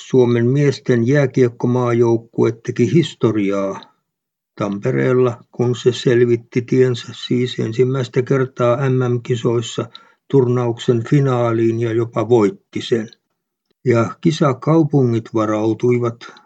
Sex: male